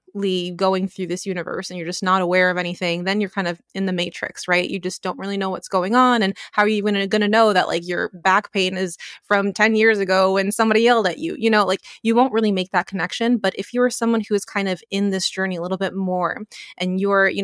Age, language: 20-39, English